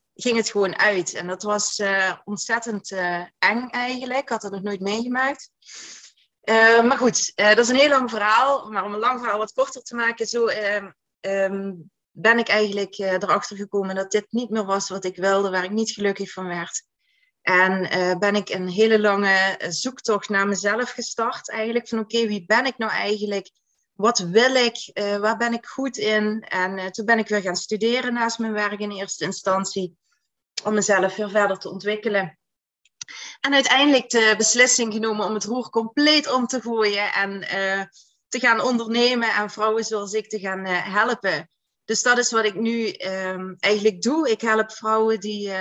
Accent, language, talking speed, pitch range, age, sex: Dutch, Dutch, 190 wpm, 195-230 Hz, 30-49, female